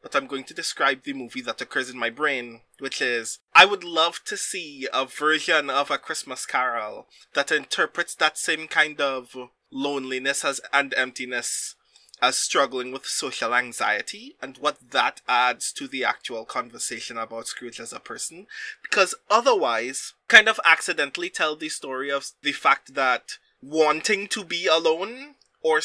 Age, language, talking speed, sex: 20-39, English, 160 wpm, male